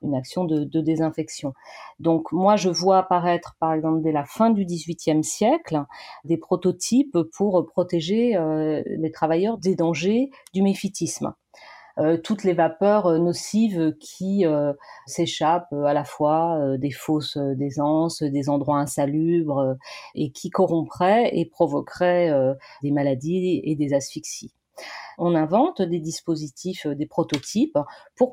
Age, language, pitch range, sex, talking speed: 40-59, French, 155-195 Hz, female, 140 wpm